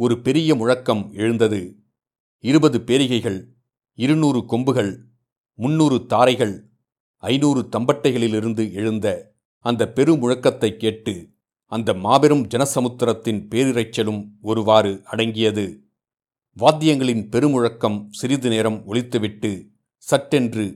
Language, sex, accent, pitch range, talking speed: Tamil, male, native, 110-135 Hz, 80 wpm